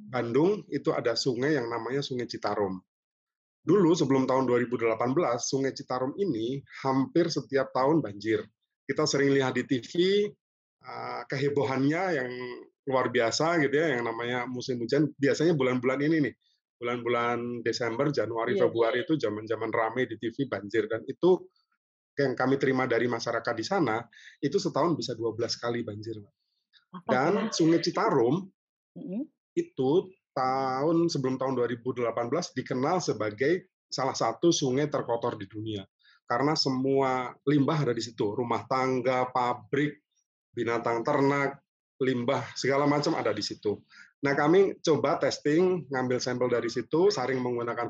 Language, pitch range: Indonesian, 120-150 Hz